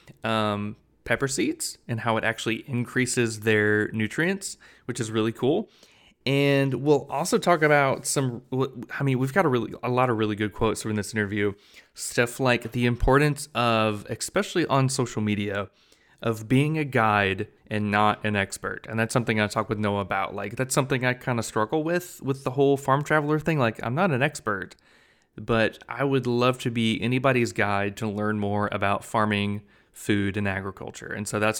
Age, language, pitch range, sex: 20-39, English, 105-130 Hz, male